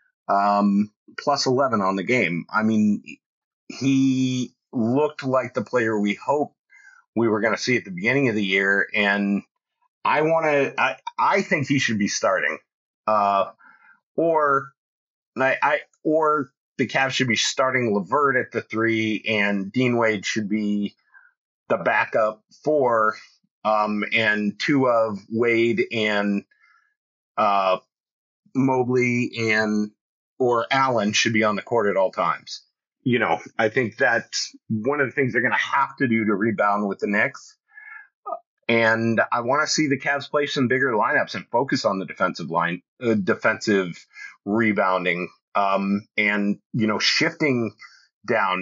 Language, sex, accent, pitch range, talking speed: English, male, American, 105-135 Hz, 150 wpm